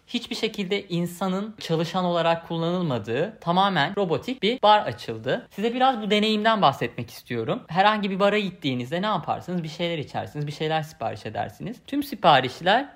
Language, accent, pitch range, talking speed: Turkish, native, 135-205 Hz, 150 wpm